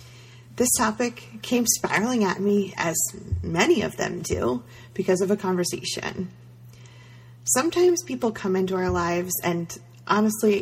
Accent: American